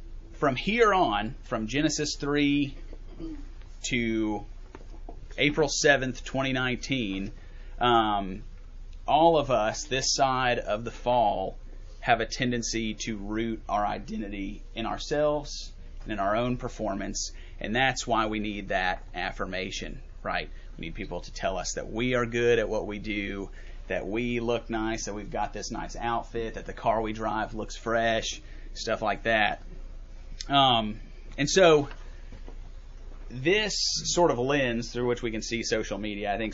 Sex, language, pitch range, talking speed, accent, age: male, English, 105-130 Hz, 150 wpm, American, 30-49